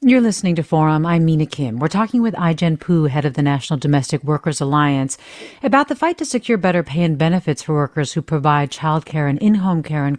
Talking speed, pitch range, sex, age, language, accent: 225 wpm, 160-200 Hz, female, 40-59, English, American